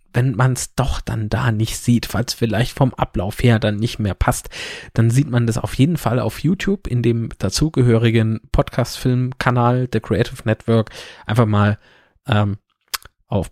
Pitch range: 105-120 Hz